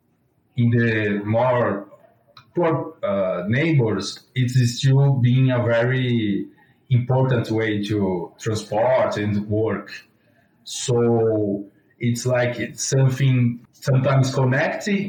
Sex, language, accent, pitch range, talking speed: male, English, Brazilian, 110-140 Hz, 100 wpm